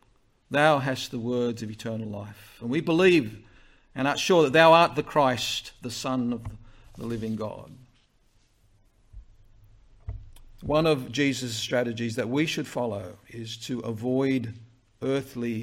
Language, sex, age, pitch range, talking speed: English, male, 50-69, 110-140 Hz, 140 wpm